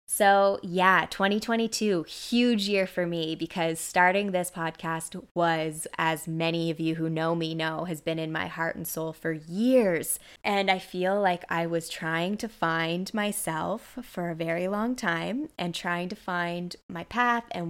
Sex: female